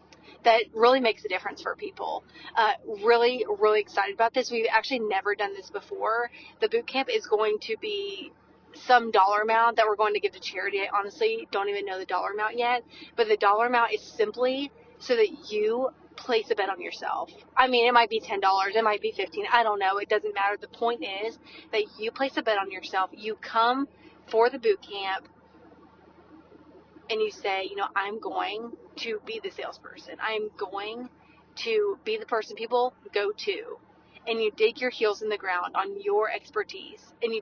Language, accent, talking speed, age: English, American, 200 wpm, 30-49